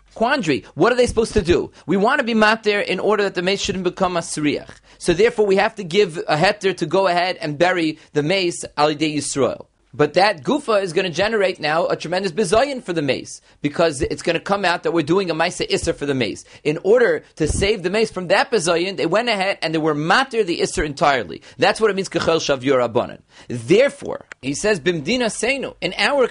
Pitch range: 170-215 Hz